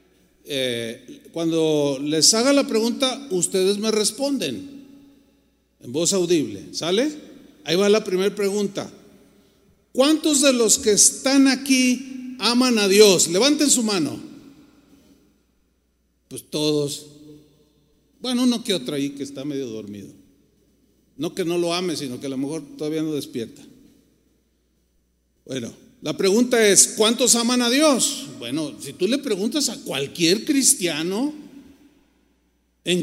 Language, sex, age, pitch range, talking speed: Spanish, male, 50-69, 170-275 Hz, 130 wpm